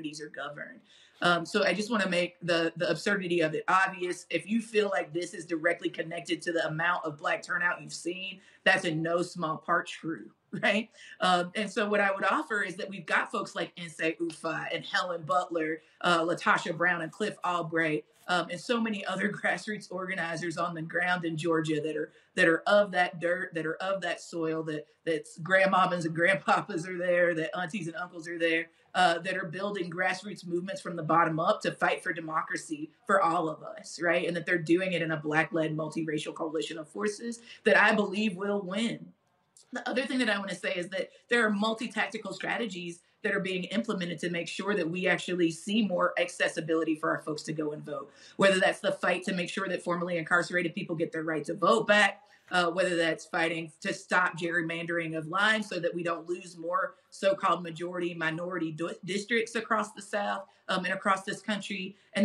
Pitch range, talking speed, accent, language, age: 165-200 Hz, 205 wpm, American, English, 30-49